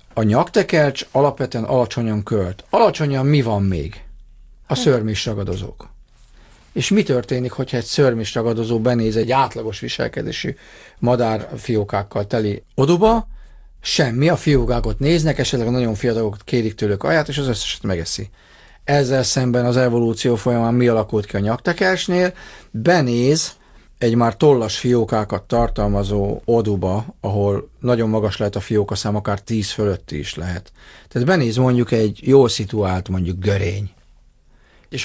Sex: male